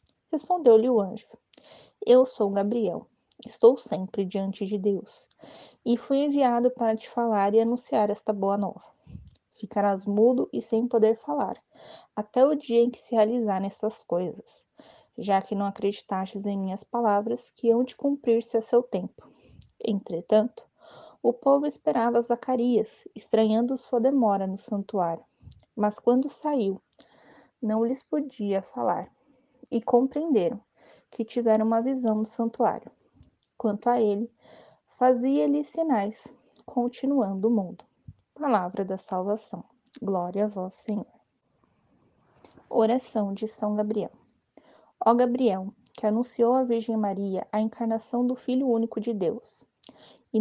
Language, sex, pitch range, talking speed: Portuguese, female, 205-245 Hz, 130 wpm